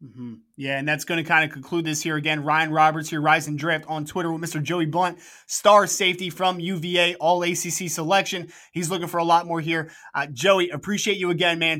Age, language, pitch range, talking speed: 20-39, English, 160-190 Hz, 220 wpm